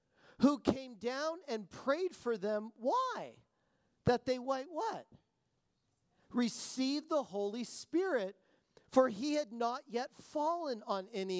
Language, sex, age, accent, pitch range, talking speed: English, male, 40-59, American, 220-280 Hz, 125 wpm